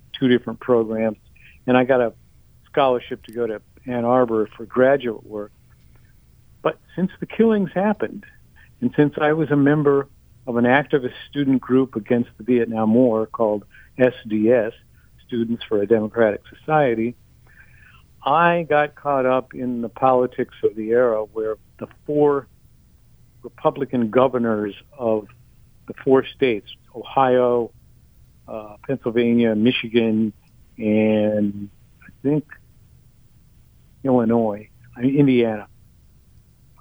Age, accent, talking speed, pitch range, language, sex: 50-69, American, 115 wpm, 110-130 Hz, English, male